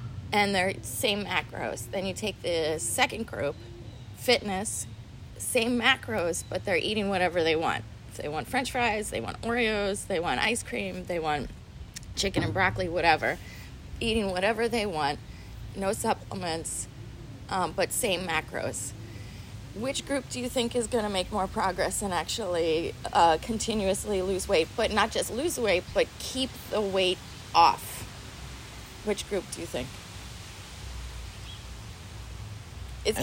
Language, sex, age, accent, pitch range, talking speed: English, female, 30-49, American, 155-240 Hz, 145 wpm